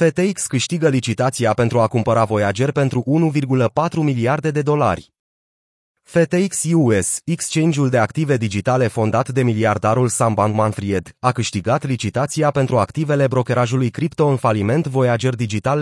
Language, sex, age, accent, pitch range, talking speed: Romanian, male, 30-49, native, 115-145 Hz, 130 wpm